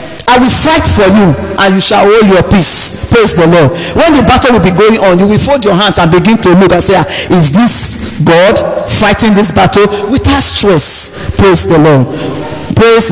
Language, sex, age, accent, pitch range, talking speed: English, male, 50-69, Nigerian, 160-215 Hz, 200 wpm